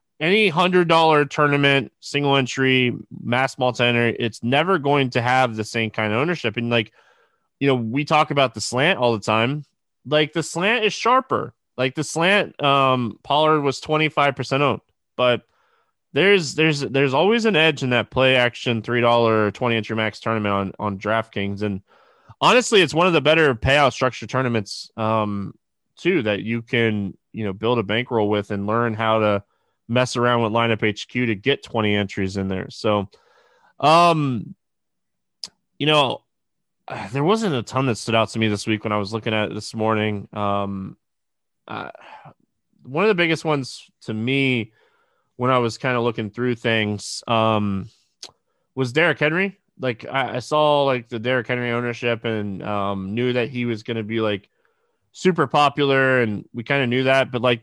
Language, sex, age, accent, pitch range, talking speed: English, male, 20-39, American, 110-145 Hz, 180 wpm